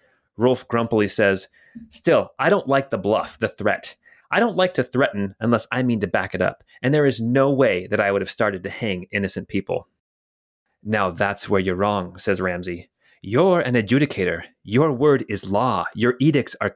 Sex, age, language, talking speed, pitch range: male, 30-49, English, 195 wpm, 100-140 Hz